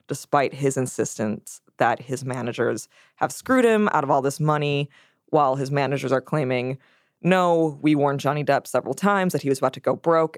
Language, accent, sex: English, American, female